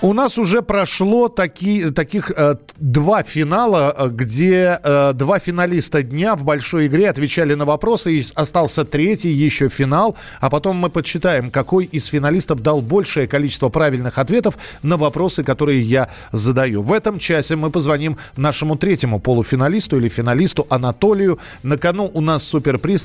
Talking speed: 150 wpm